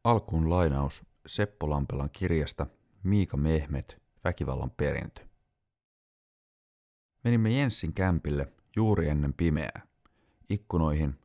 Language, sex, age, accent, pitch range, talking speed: Finnish, male, 30-49, native, 75-95 Hz, 85 wpm